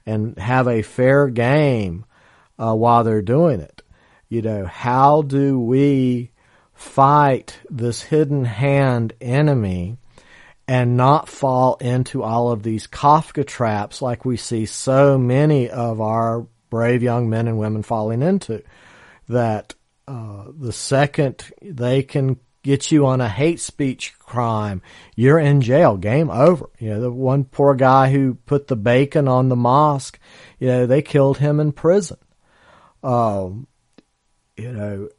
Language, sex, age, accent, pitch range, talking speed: English, male, 50-69, American, 115-140 Hz, 145 wpm